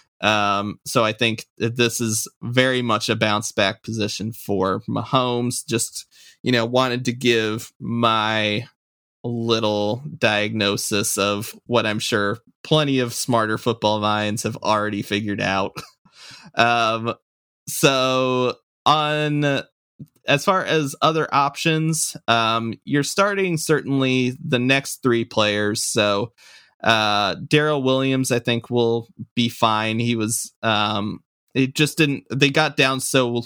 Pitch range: 105-130 Hz